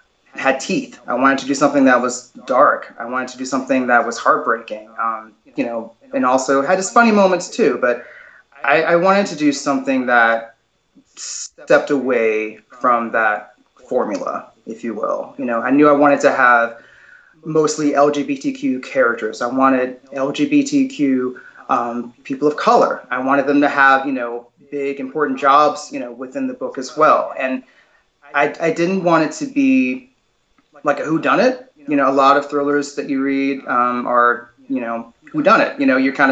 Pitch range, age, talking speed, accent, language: 125-150 Hz, 30-49, 180 wpm, American, English